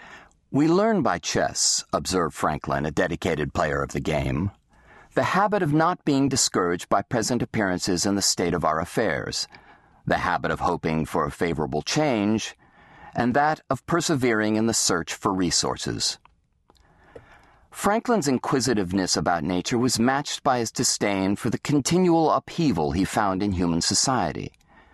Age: 40-59